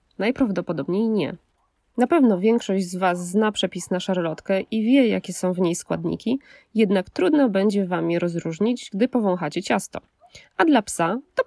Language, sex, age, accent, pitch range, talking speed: Polish, female, 20-39, native, 180-245 Hz, 160 wpm